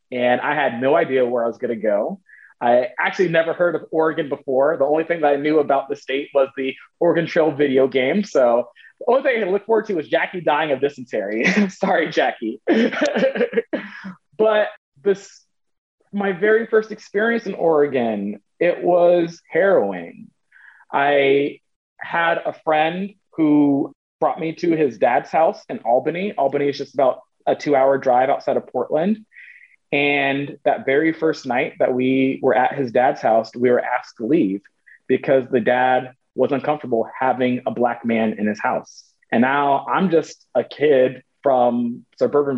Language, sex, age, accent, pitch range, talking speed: English, male, 30-49, American, 130-175 Hz, 170 wpm